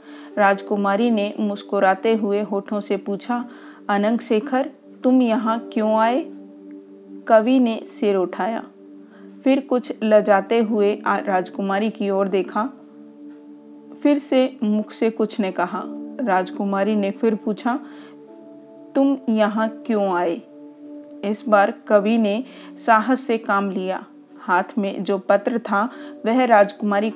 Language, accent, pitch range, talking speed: Hindi, native, 195-230 Hz, 120 wpm